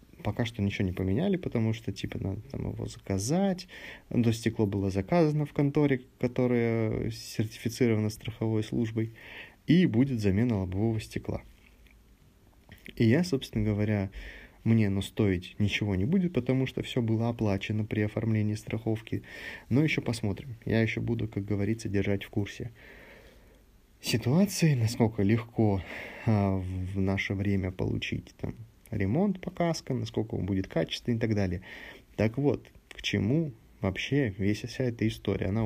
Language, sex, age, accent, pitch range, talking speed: Russian, male, 20-39, native, 100-120 Hz, 140 wpm